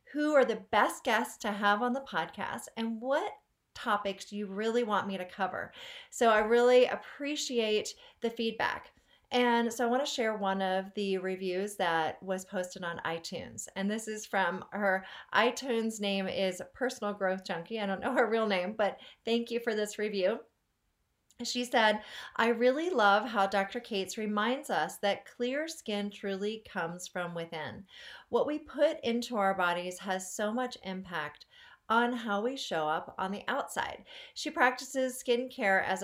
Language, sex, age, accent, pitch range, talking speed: English, female, 30-49, American, 195-245 Hz, 170 wpm